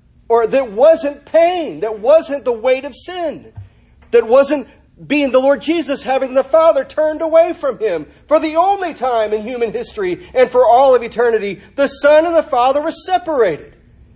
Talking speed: 180 wpm